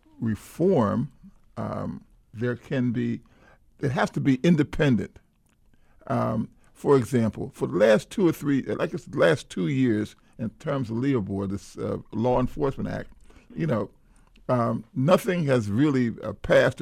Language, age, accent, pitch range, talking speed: English, 50-69, American, 115-145 Hz, 150 wpm